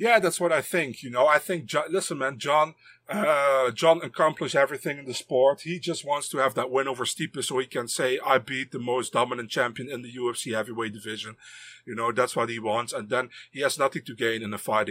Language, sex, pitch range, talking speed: English, male, 125-160 Hz, 240 wpm